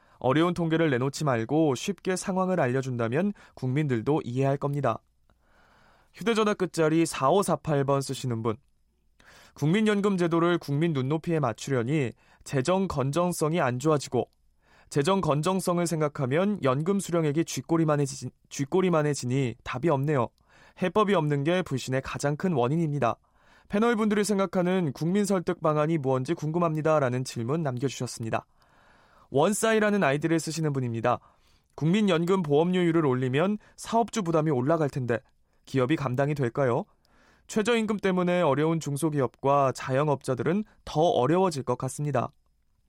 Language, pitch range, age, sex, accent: Korean, 130-180 Hz, 20-39, male, native